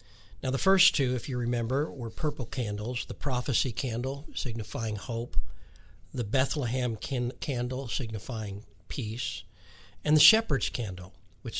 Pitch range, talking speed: 100-130 Hz, 130 wpm